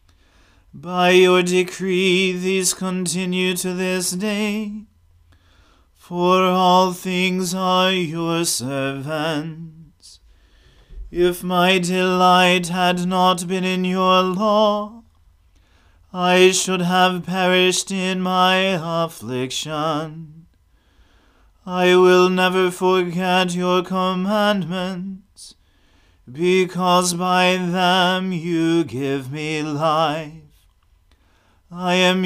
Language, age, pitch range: English, 30-49, 150-185 Hz